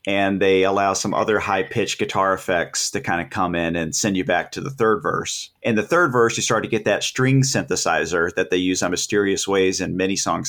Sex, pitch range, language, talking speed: male, 95-125 Hz, English, 235 wpm